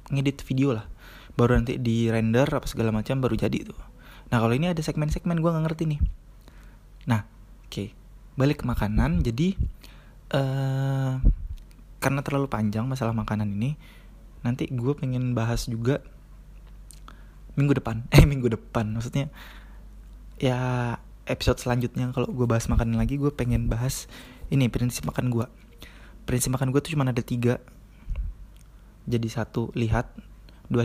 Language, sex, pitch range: Indonesian, male, 115-135 Hz